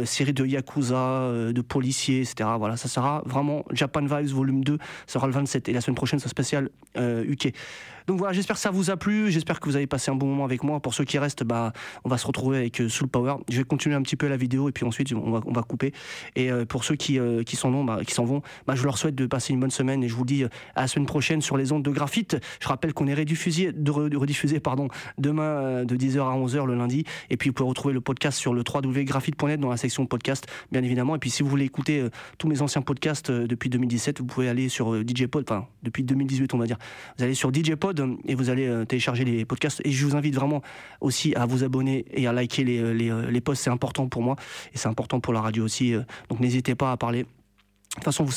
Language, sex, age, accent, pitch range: Japanese, male, 30-49, French, 125-145 Hz